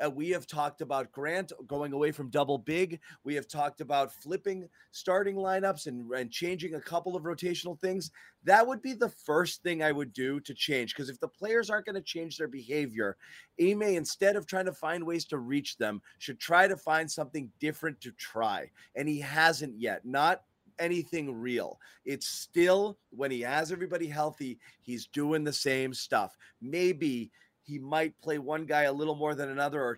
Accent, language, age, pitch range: American, English, 30-49, 135-175 Hz